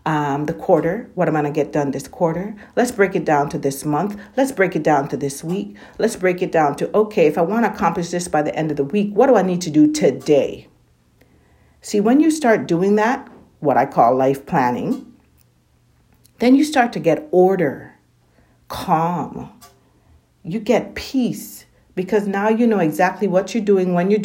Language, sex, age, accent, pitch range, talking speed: English, female, 50-69, American, 165-240 Hz, 200 wpm